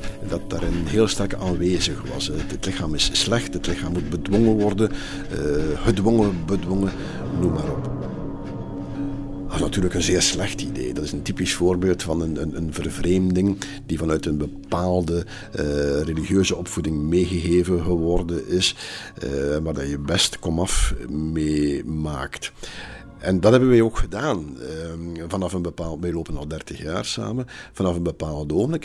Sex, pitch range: male, 80-95 Hz